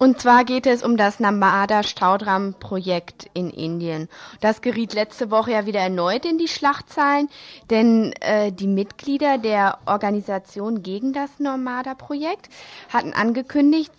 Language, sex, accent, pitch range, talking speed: German, female, German, 190-235 Hz, 130 wpm